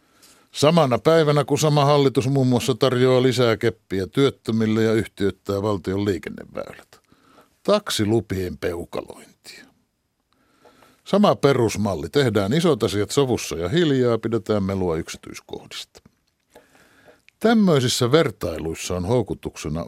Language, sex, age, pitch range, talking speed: Finnish, male, 60-79, 105-145 Hz, 95 wpm